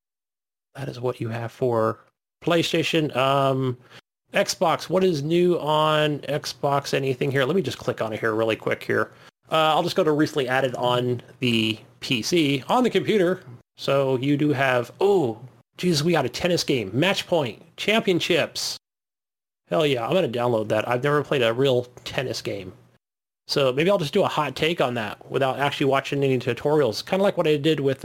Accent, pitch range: American, 125-170 Hz